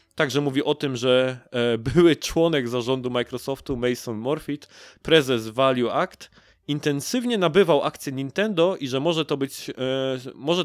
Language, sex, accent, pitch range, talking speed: Polish, male, native, 110-145 Hz, 135 wpm